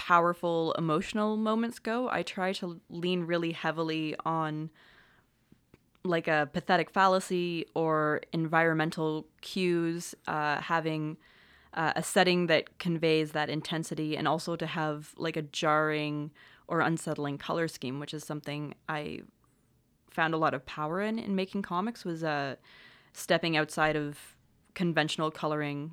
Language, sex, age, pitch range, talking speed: English, female, 20-39, 150-175 Hz, 135 wpm